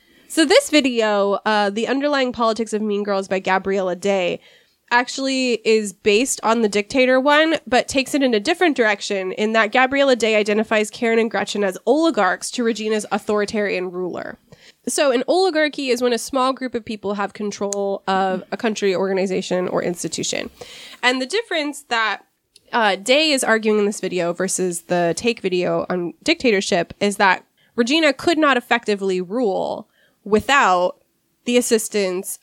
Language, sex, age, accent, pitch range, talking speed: English, female, 20-39, American, 195-270 Hz, 160 wpm